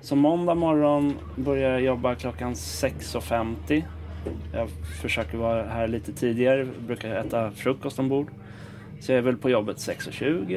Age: 20-39